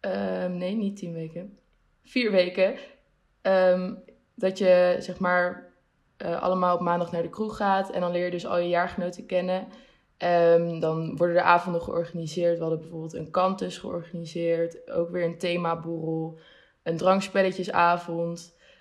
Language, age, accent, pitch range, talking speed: Dutch, 20-39, Dutch, 170-195 Hz, 150 wpm